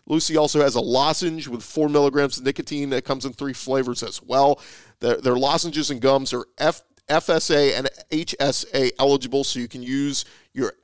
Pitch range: 130-155 Hz